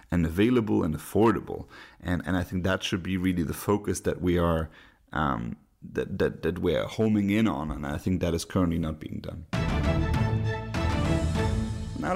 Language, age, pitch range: English, 30-49, 95-120 Hz